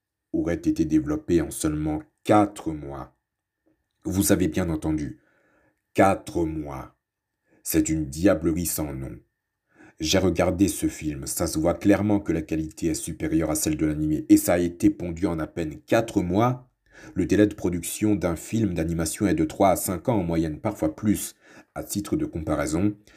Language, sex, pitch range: French, male, 80-105 Hz